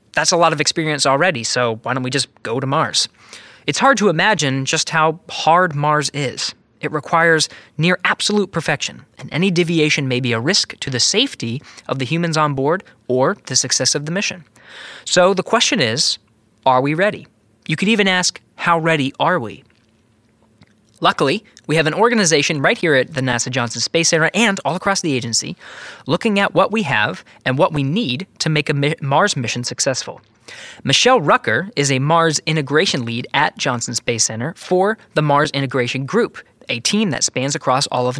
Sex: male